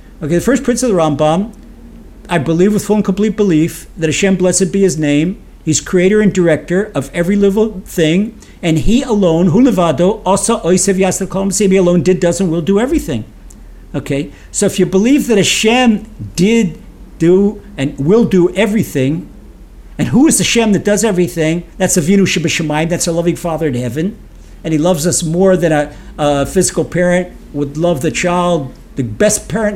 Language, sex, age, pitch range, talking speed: English, male, 50-69, 165-210 Hz, 190 wpm